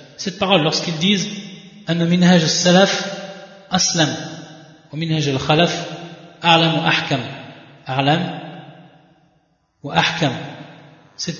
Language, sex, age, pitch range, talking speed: French, male, 30-49, 155-180 Hz, 75 wpm